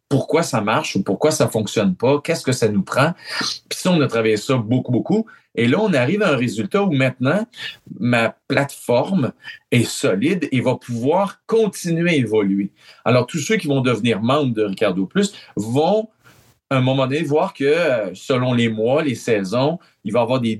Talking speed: 190 wpm